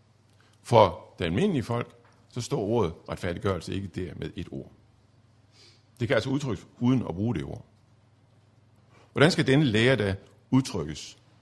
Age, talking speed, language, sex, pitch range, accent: 50-69, 145 wpm, Danish, male, 100-130 Hz, native